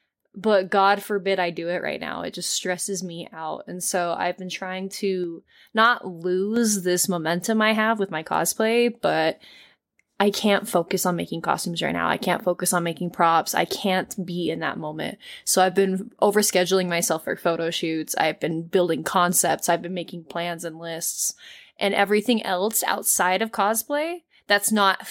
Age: 20-39